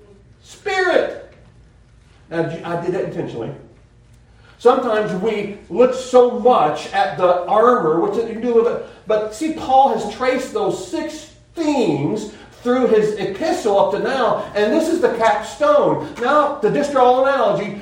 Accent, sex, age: American, male, 40-59